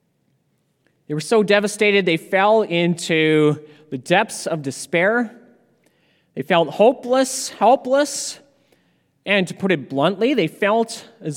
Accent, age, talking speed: American, 30-49, 120 wpm